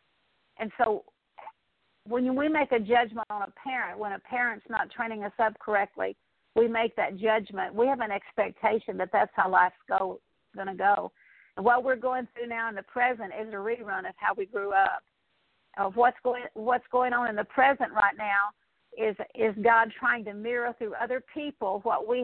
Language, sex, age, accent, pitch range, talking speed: English, female, 50-69, American, 210-250 Hz, 195 wpm